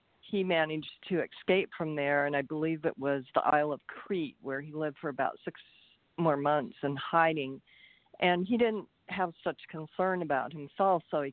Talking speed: 185 wpm